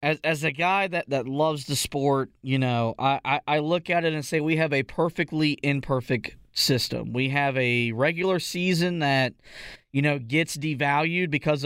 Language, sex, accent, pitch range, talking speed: English, male, American, 135-170 Hz, 185 wpm